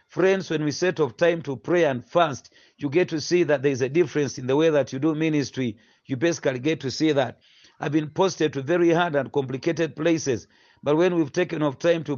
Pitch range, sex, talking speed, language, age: 135-170 Hz, male, 235 wpm, English, 40-59